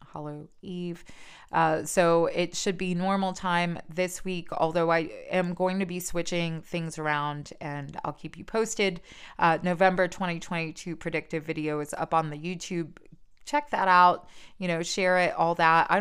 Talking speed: 170 wpm